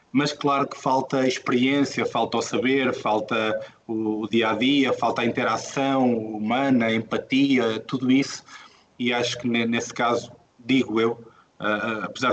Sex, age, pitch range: male, 20-39, 110-125 Hz